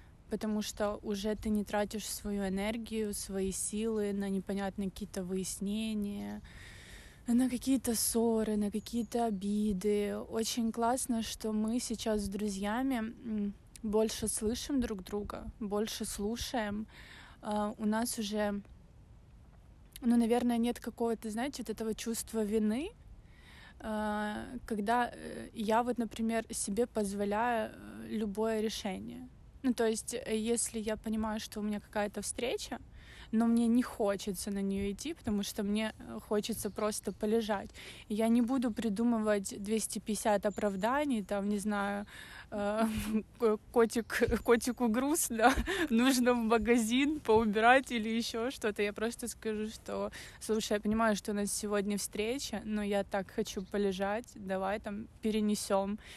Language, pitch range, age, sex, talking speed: Russian, 205-230 Hz, 20-39, female, 125 wpm